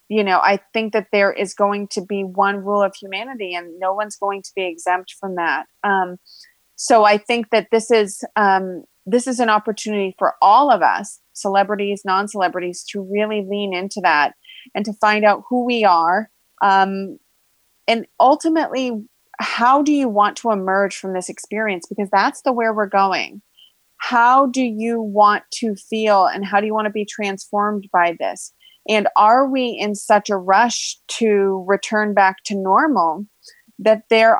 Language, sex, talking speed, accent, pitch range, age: English, female, 175 wpm, American, 195-225 Hz, 30-49